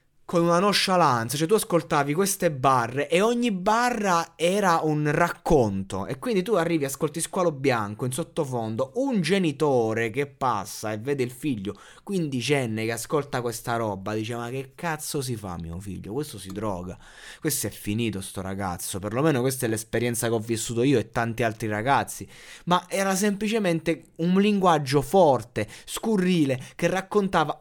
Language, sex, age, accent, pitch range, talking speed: Italian, male, 20-39, native, 115-175 Hz, 160 wpm